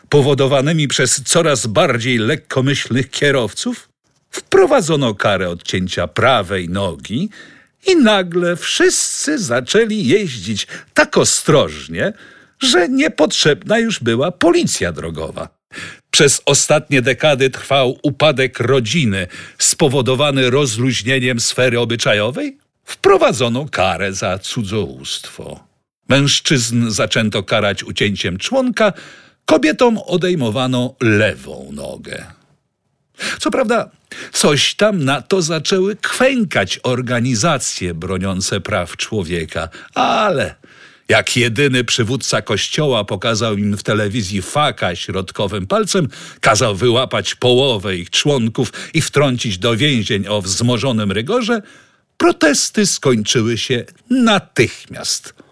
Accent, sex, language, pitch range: Polish, male, English, 110-170 Hz